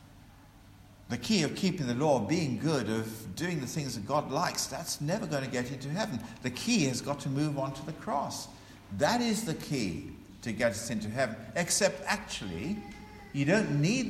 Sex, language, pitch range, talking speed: male, English, 95-140 Hz, 195 wpm